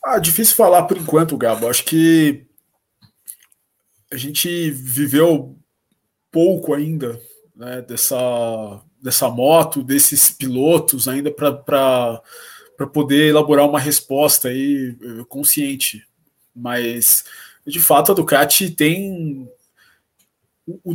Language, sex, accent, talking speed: Portuguese, male, Brazilian, 95 wpm